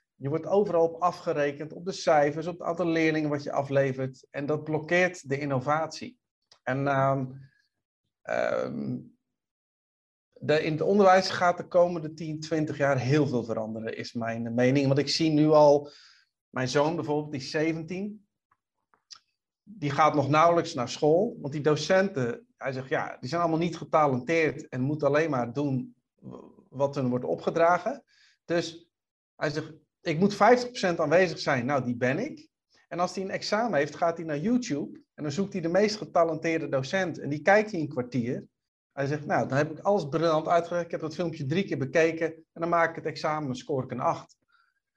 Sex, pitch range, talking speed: male, 140-175 Hz, 185 wpm